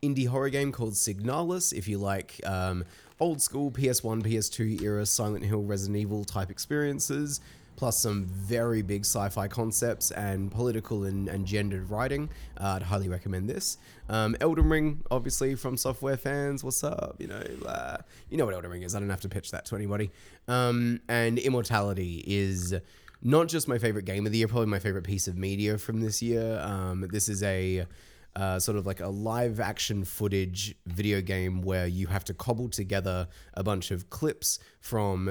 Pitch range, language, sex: 95-115 Hz, English, male